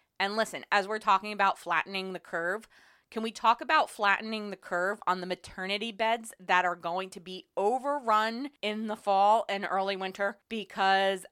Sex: female